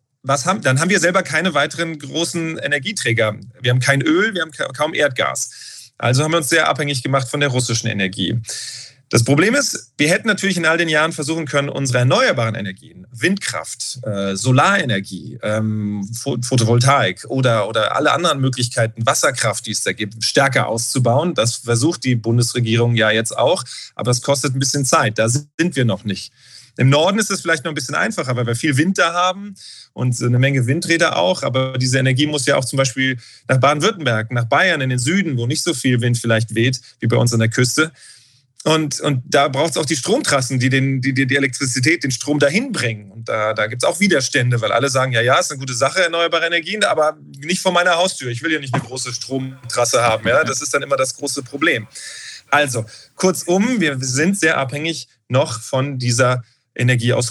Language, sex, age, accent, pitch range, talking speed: German, male, 40-59, German, 120-155 Hz, 200 wpm